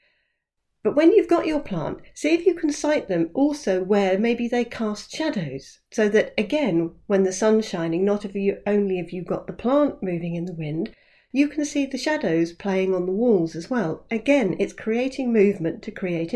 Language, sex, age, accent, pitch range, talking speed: English, female, 40-59, British, 185-245 Hz, 195 wpm